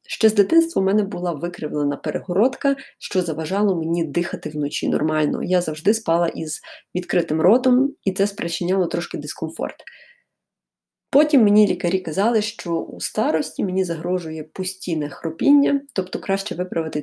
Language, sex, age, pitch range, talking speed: Ukrainian, female, 20-39, 165-225 Hz, 135 wpm